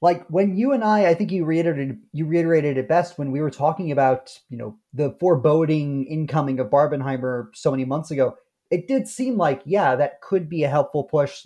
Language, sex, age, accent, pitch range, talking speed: English, male, 30-49, American, 140-170 Hz, 210 wpm